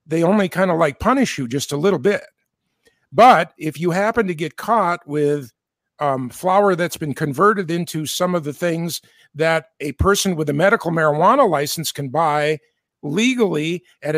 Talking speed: 175 wpm